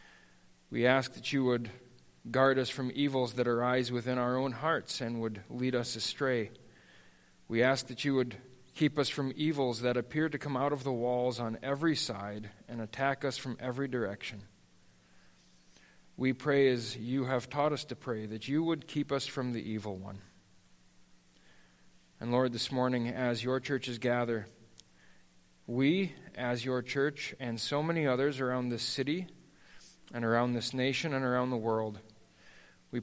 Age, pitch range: 40-59, 115-140 Hz